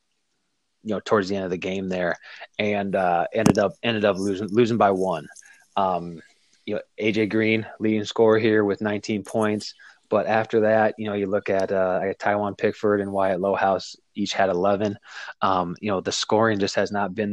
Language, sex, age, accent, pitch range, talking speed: English, male, 20-39, American, 95-110 Hz, 195 wpm